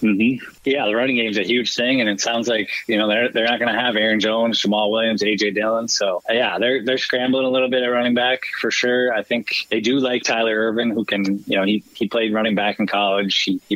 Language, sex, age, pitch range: English, male, 20-39, 105-120 Hz